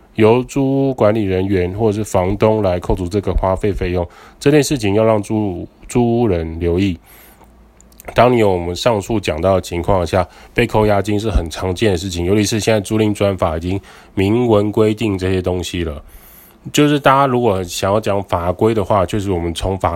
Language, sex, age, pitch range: Chinese, male, 20-39, 90-110 Hz